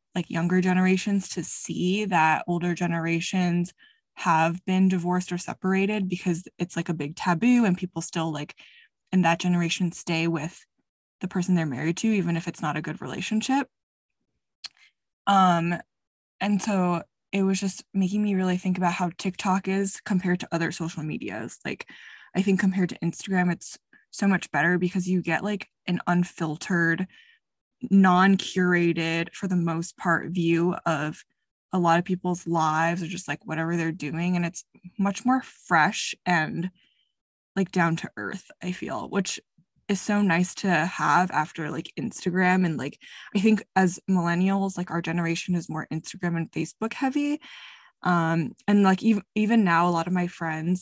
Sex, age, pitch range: female, 20-39, 170-195 Hz